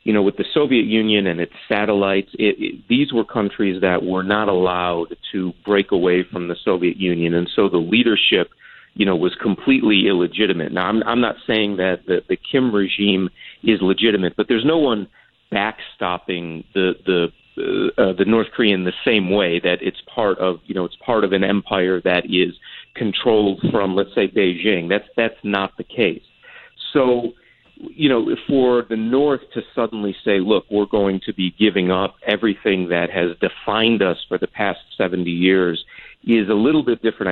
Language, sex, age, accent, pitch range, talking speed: English, male, 40-59, American, 90-110 Hz, 185 wpm